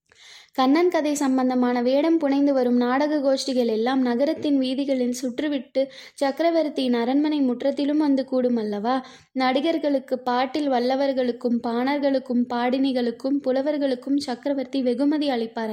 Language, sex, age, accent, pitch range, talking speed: Tamil, female, 20-39, native, 245-285 Hz, 105 wpm